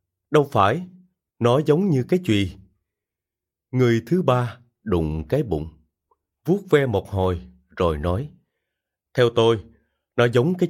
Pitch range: 90-135 Hz